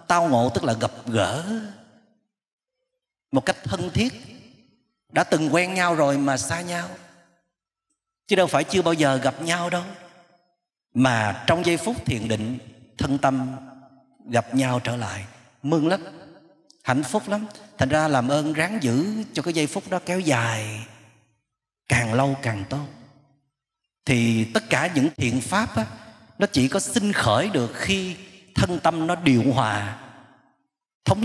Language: Vietnamese